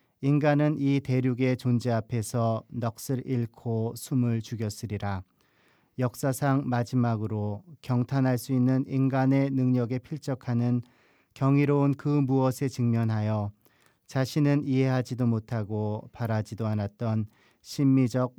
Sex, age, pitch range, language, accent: male, 40-59, 115-135 Hz, Korean, native